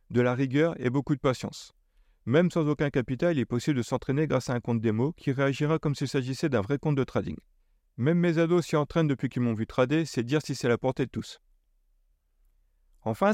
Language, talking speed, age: French, 225 wpm, 30-49